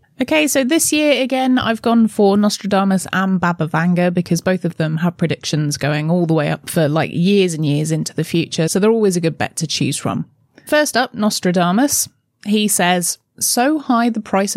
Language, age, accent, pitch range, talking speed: English, 20-39, British, 170-225 Hz, 200 wpm